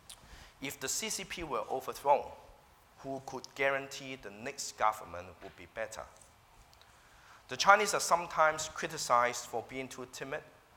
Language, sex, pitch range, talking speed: English, male, 110-135 Hz, 130 wpm